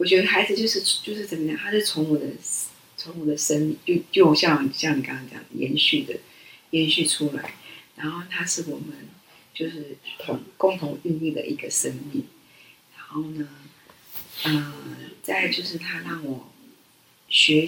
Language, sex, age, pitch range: Chinese, female, 30-49, 150-180 Hz